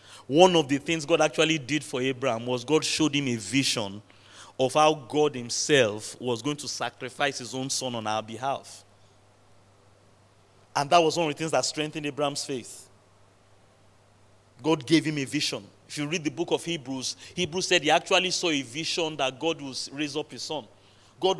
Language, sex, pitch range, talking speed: English, male, 110-185 Hz, 190 wpm